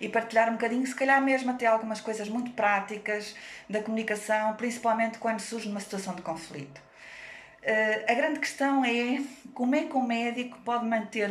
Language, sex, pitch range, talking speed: Portuguese, female, 200-255 Hz, 170 wpm